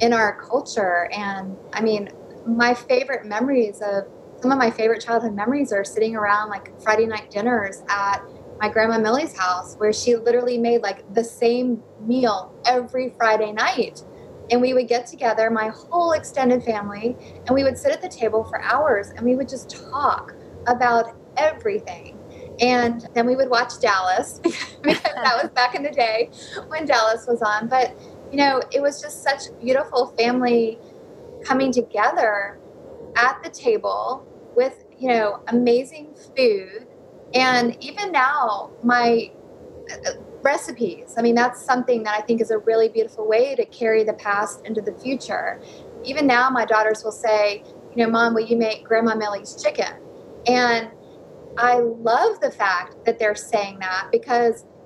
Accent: American